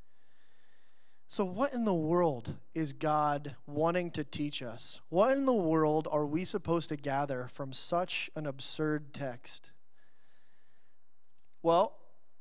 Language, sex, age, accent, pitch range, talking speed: English, male, 20-39, American, 150-180 Hz, 125 wpm